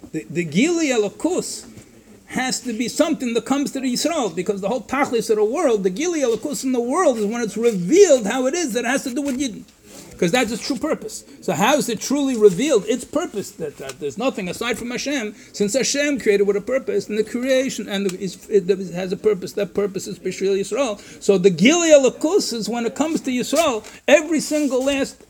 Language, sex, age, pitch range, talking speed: English, male, 60-79, 195-270 Hz, 225 wpm